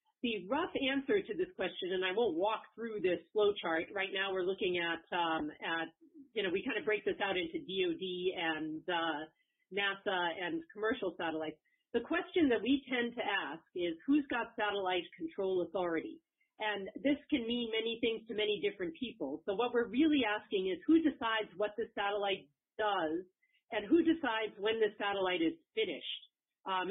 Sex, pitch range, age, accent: female, 185-265 Hz, 40-59, American